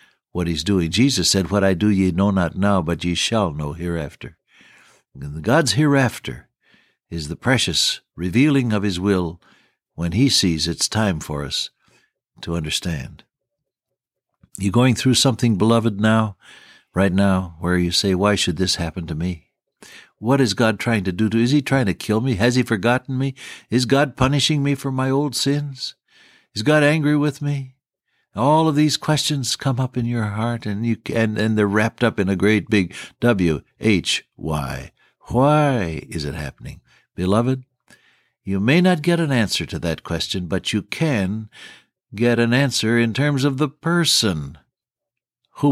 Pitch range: 95-135 Hz